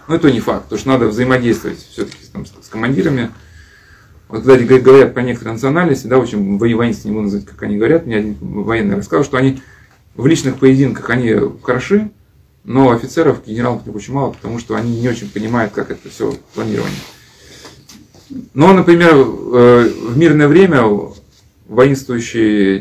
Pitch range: 110-135 Hz